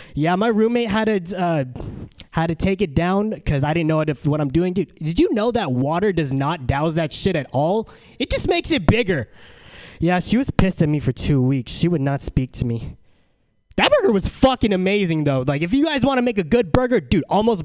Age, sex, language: 20-39, male, English